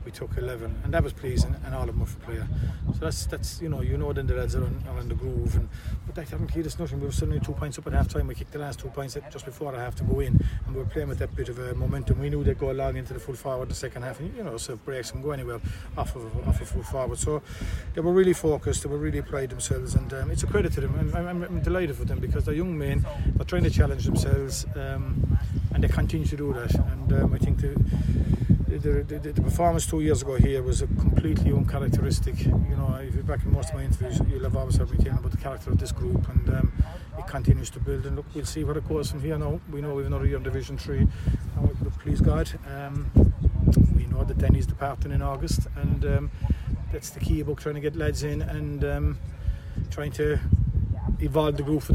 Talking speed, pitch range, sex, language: 265 wpm, 90-140 Hz, male, English